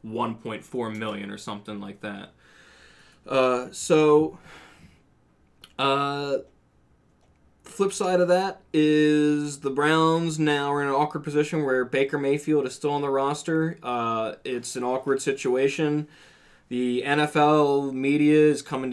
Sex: male